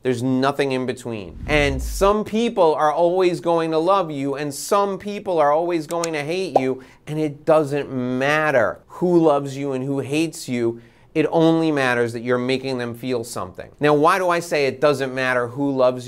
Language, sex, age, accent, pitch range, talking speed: English, male, 30-49, American, 125-155 Hz, 195 wpm